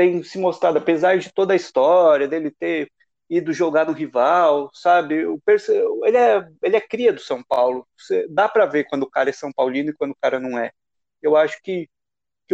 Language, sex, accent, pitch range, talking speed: Portuguese, male, Brazilian, 150-235 Hz, 210 wpm